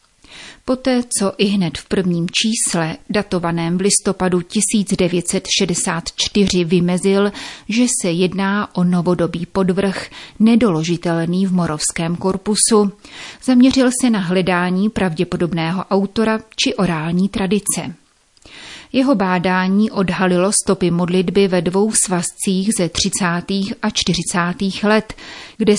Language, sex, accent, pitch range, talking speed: Czech, female, native, 180-215 Hz, 105 wpm